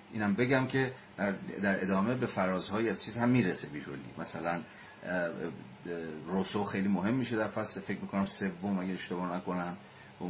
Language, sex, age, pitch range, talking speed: Persian, male, 40-59, 85-100 Hz, 155 wpm